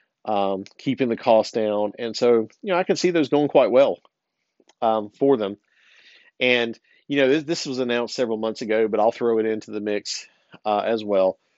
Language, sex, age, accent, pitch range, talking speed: English, male, 50-69, American, 105-120 Hz, 200 wpm